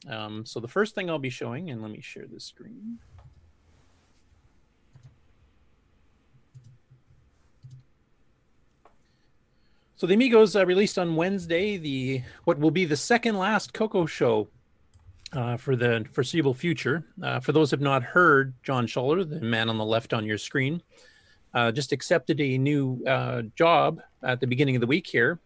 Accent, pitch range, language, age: American, 120-150 Hz, English, 40-59